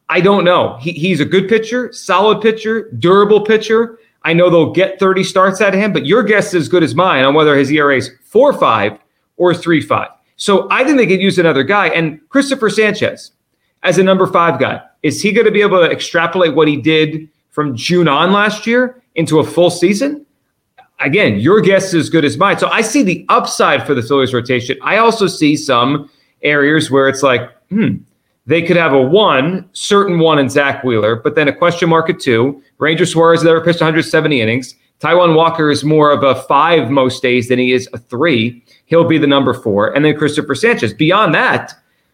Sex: male